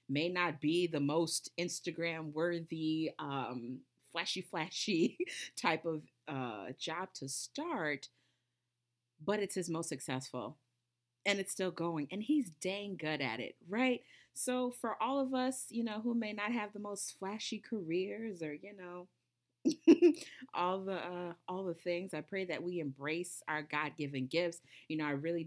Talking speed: 160 wpm